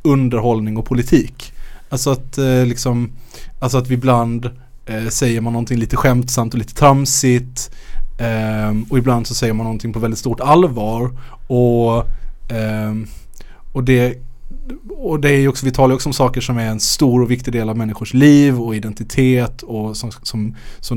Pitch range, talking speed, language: 115-135 Hz, 175 wpm, Swedish